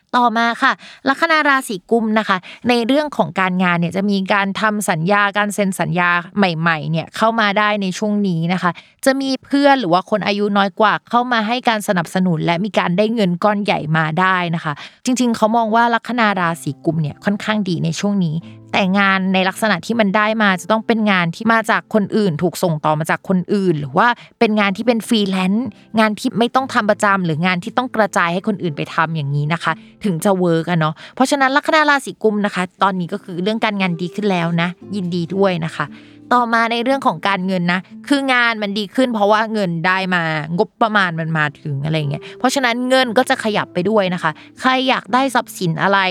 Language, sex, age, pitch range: Thai, female, 20-39, 175-225 Hz